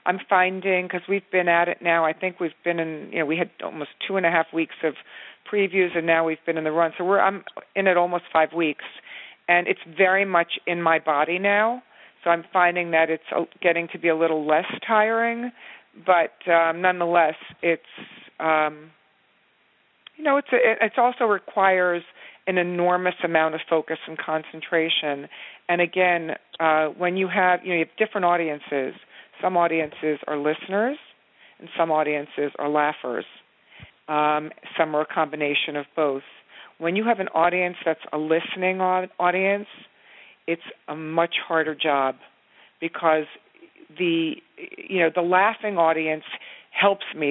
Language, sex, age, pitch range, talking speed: English, female, 40-59, 160-185 Hz, 160 wpm